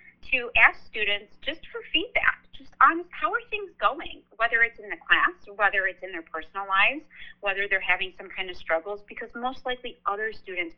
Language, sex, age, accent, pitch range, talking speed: English, female, 40-59, American, 180-245 Hz, 195 wpm